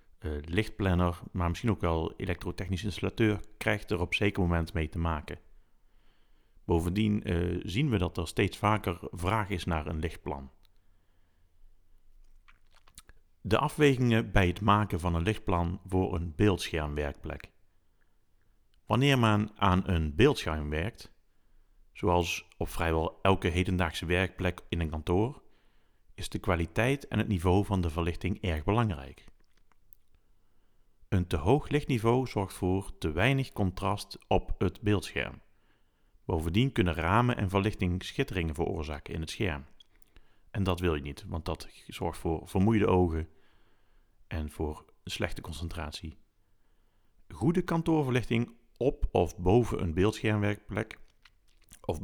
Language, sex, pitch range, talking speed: Dutch, male, 85-105 Hz, 125 wpm